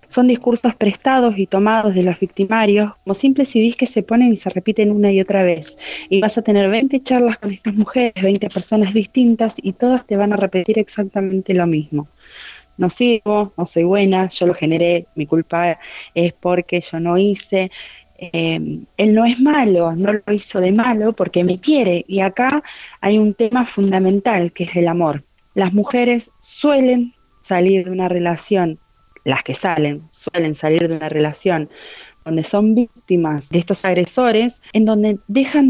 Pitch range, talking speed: 175-220 Hz, 175 wpm